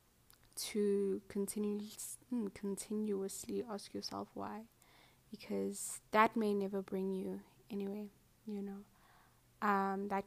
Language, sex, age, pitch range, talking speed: English, female, 10-29, 195-210 Hz, 100 wpm